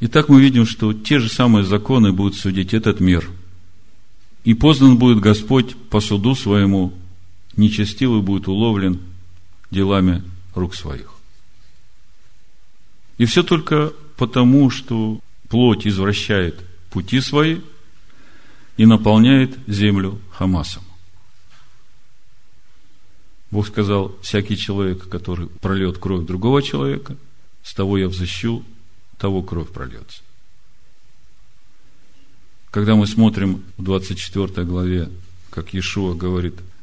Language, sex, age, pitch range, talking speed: Russian, male, 50-69, 95-110 Hz, 105 wpm